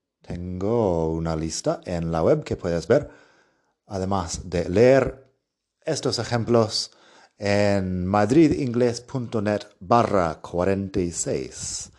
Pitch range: 95-135 Hz